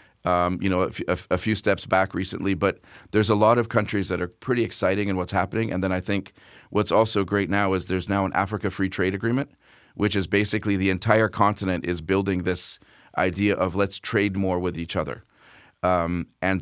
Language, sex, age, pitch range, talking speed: English, male, 40-59, 90-105 Hz, 210 wpm